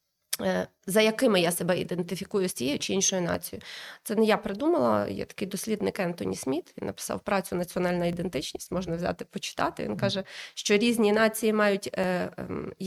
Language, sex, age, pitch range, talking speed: Ukrainian, female, 20-39, 185-220 Hz, 155 wpm